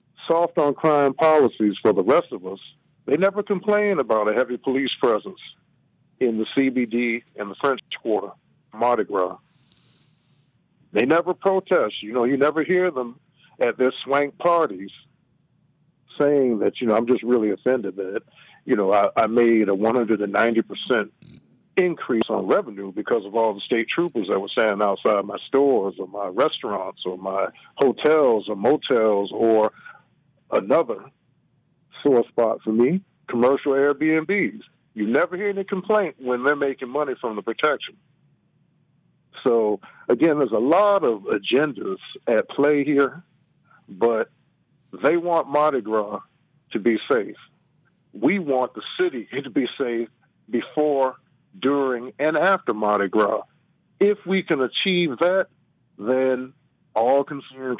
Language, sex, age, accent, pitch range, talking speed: English, male, 50-69, American, 120-170 Hz, 145 wpm